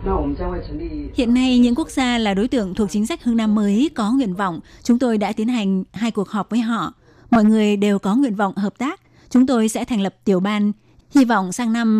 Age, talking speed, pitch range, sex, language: 20-39, 230 wpm, 200-235 Hz, female, Vietnamese